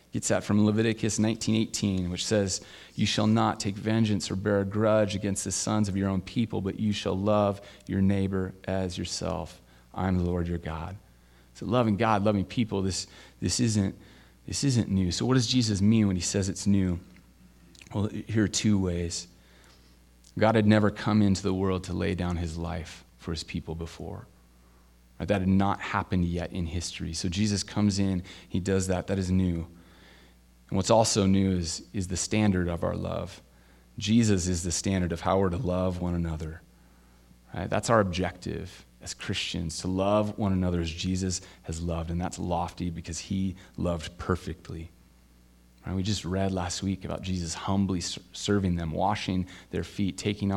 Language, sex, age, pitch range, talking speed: English, male, 30-49, 85-100 Hz, 180 wpm